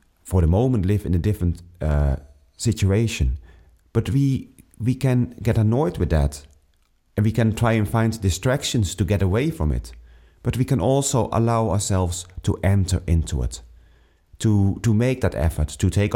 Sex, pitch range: male, 80-110 Hz